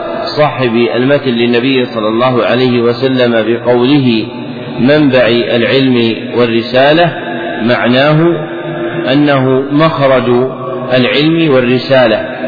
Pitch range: 120-145 Hz